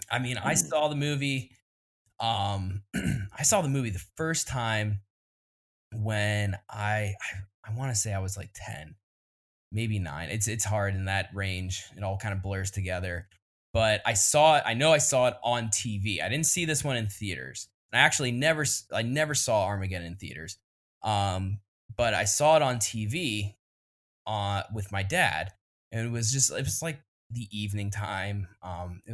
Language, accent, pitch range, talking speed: English, American, 100-125 Hz, 185 wpm